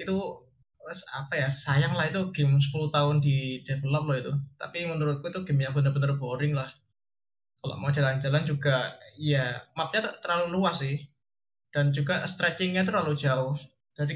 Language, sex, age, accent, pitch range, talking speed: Indonesian, male, 20-39, native, 140-175 Hz, 150 wpm